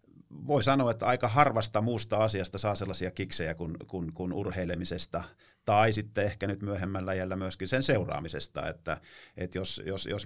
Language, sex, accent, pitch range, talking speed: Finnish, male, native, 90-105 Hz, 165 wpm